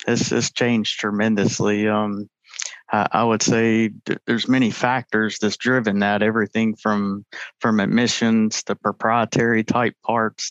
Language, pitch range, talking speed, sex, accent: English, 105-115 Hz, 130 wpm, male, American